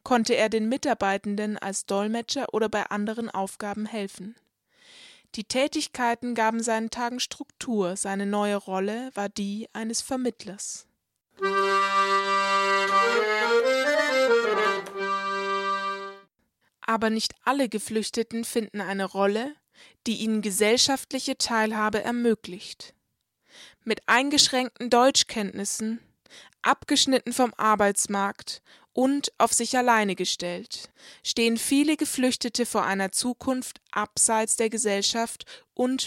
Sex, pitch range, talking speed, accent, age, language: female, 205-240 Hz, 95 wpm, German, 20-39, German